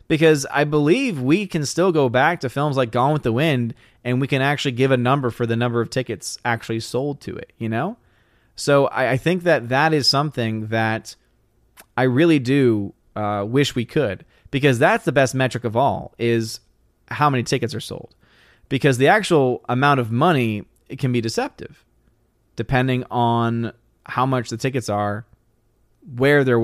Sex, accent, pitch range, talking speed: male, American, 115-140 Hz, 180 wpm